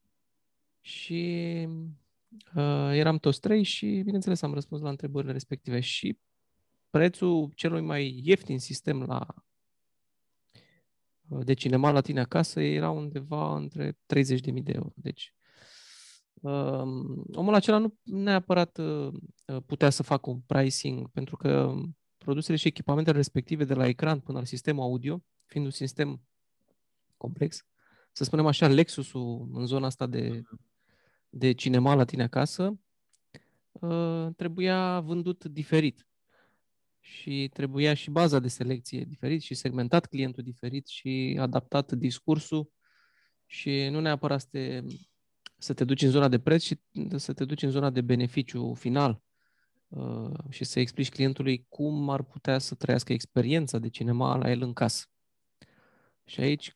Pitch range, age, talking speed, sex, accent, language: 130-155 Hz, 20-39, 130 wpm, male, native, Romanian